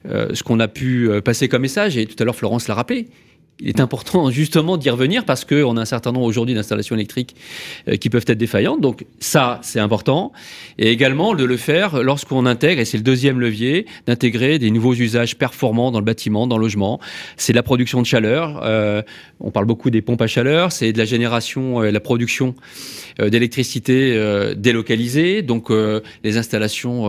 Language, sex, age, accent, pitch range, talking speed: French, male, 30-49, French, 110-135 Hz, 195 wpm